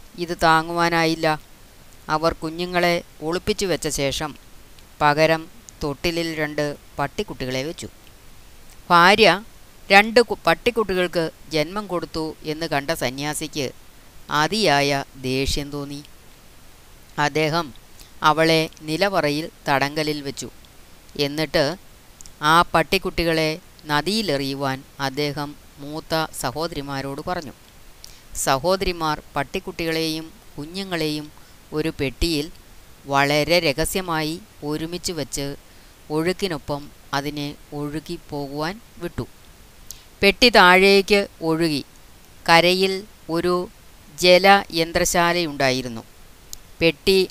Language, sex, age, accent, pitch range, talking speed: Malayalam, female, 30-49, native, 145-180 Hz, 70 wpm